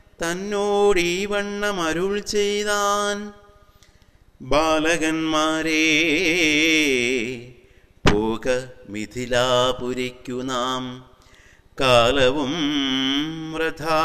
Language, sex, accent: Malayalam, male, native